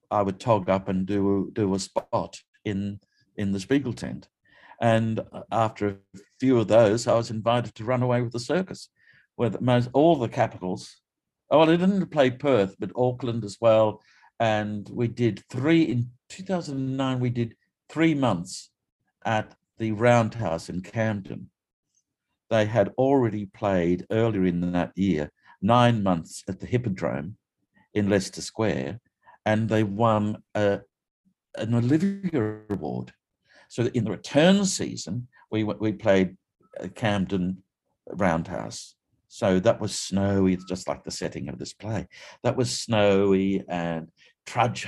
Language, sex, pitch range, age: English, male, 95-120 Hz, 60-79